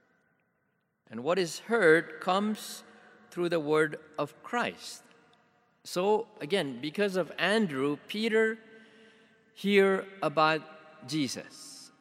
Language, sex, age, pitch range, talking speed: English, male, 50-69, 145-220 Hz, 95 wpm